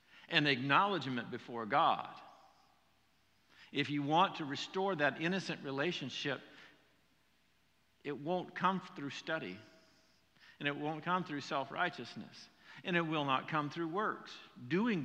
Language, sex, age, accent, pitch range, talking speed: English, male, 50-69, American, 155-230 Hz, 125 wpm